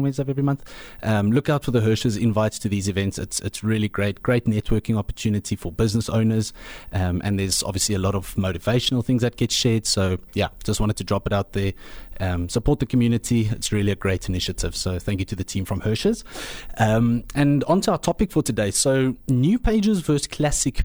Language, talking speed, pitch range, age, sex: English, 210 wpm, 95-120 Hz, 30-49, male